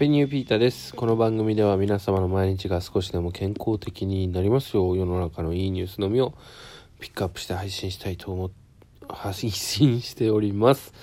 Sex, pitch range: male, 90-115 Hz